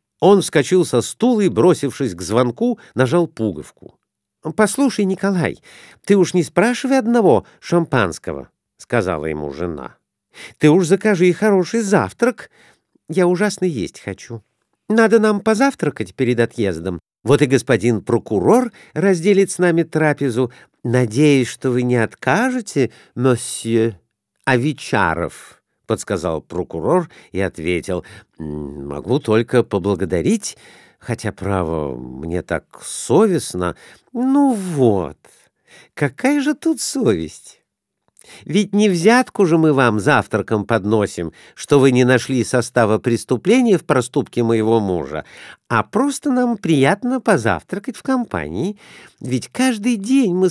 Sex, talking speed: male, 115 wpm